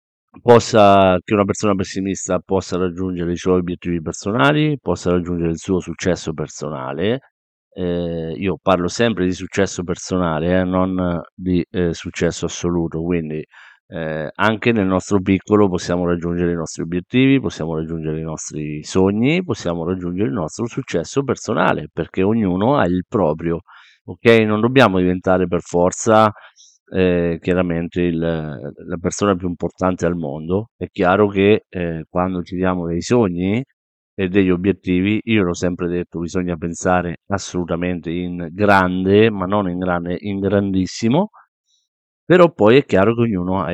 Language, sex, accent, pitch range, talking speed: Italian, male, native, 85-100 Hz, 145 wpm